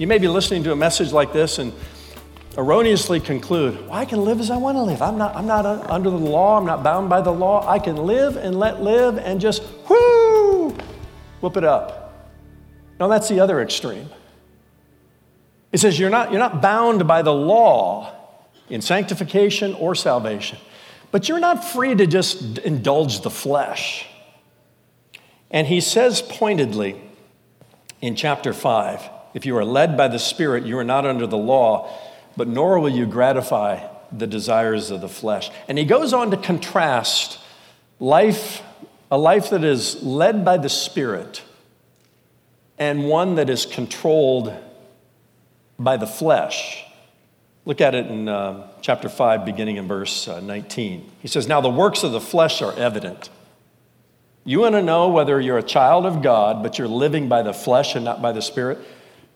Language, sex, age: English, male, 50-69